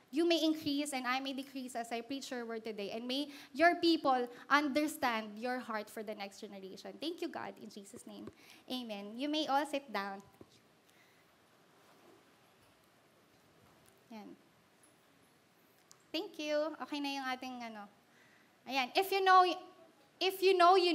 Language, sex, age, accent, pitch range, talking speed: Filipino, female, 20-39, native, 255-335 Hz, 150 wpm